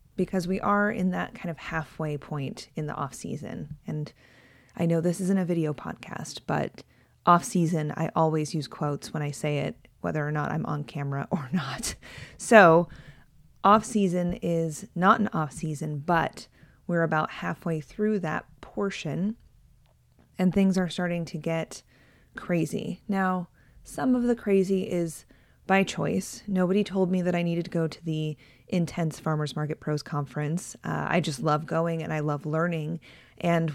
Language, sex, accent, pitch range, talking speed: English, female, American, 155-185 Hz, 160 wpm